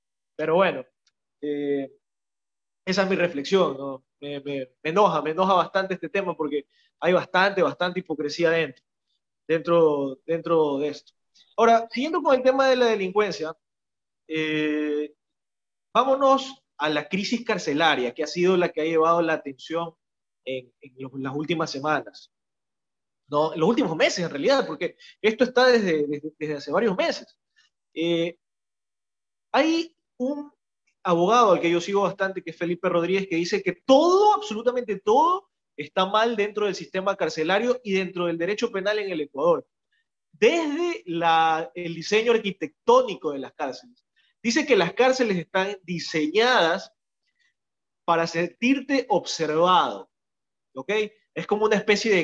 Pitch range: 155-230 Hz